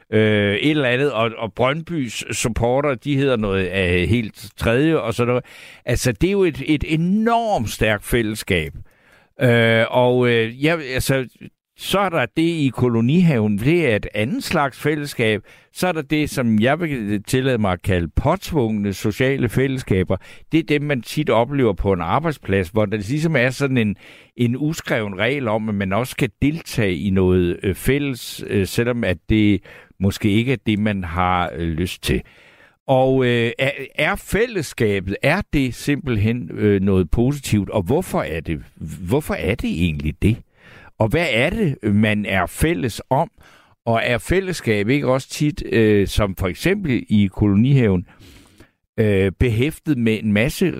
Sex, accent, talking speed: male, native, 165 wpm